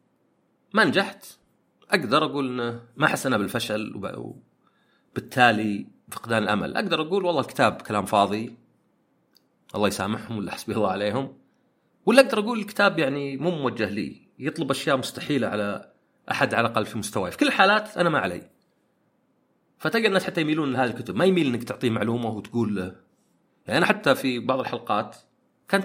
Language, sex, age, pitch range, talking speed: Arabic, male, 40-59, 110-155 Hz, 150 wpm